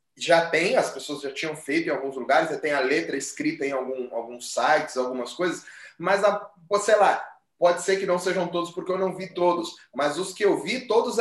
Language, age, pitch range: Portuguese, 20-39, 190-270 Hz